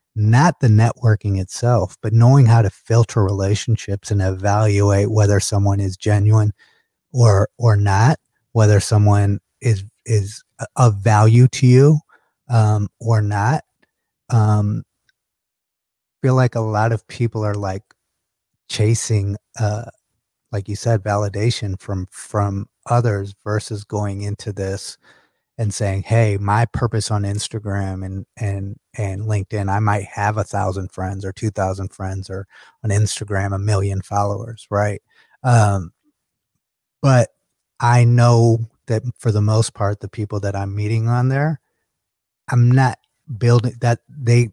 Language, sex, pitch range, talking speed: English, male, 100-120 Hz, 135 wpm